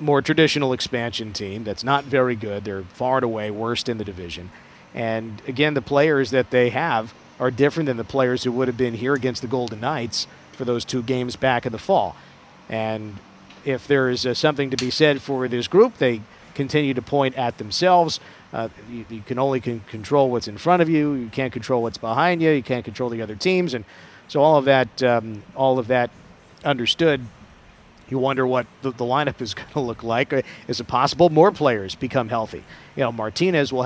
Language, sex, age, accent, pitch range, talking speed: English, male, 50-69, American, 115-145 Hz, 210 wpm